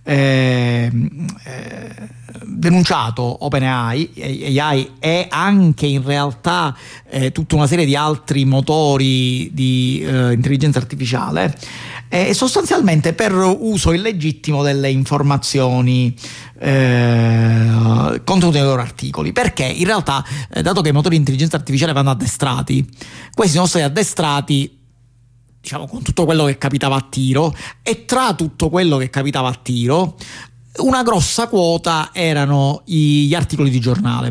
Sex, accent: male, native